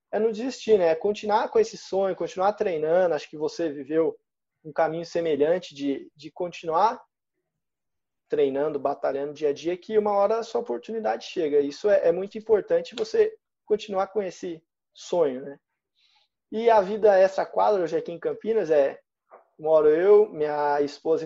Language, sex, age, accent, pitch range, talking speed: Portuguese, male, 20-39, Brazilian, 165-235 Hz, 165 wpm